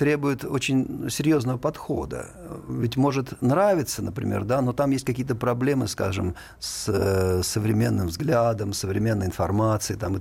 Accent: native